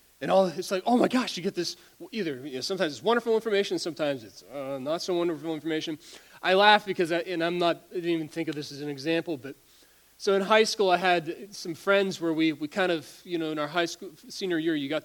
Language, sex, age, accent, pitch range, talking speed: English, male, 30-49, American, 145-190 Hz, 255 wpm